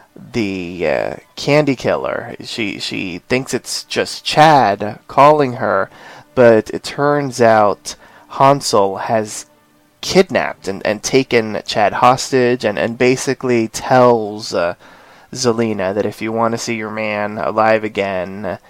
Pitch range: 110-125 Hz